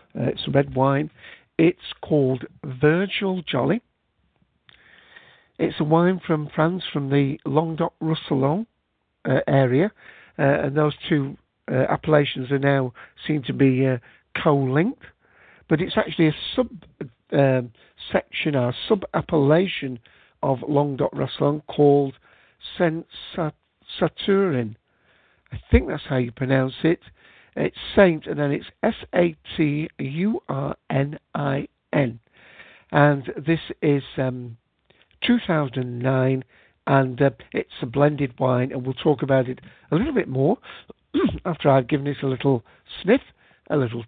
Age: 60-79